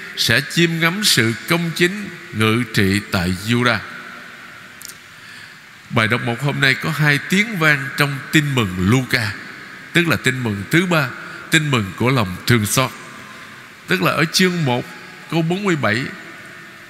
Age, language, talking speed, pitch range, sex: 60-79, Vietnamese, 150 wpm, 115-165 Hz, male